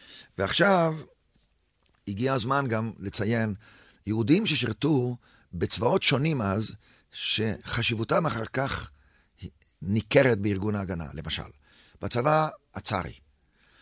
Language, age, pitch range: Hebrew, 50-69, 95-130 Hz